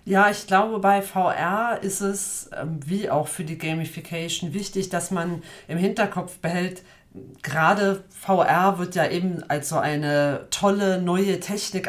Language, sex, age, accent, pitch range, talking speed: German, female, 40-59, German, 155-190 Hz, 145 wpm